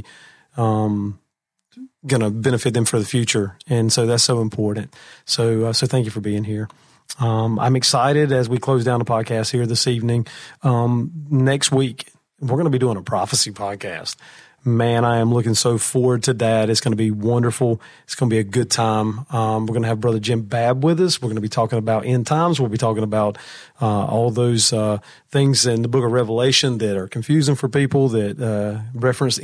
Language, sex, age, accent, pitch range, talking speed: English, male, 40-59, American, 110-130 Hz, 210 wpm